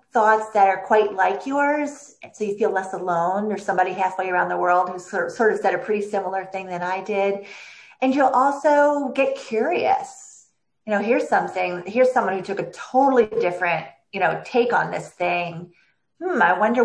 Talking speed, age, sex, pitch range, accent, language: 195 wpm, 30-49, female, 185-240 Hz, American, English